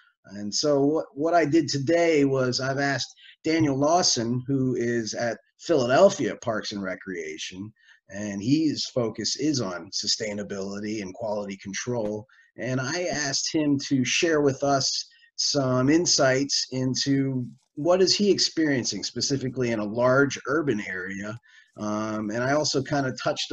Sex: male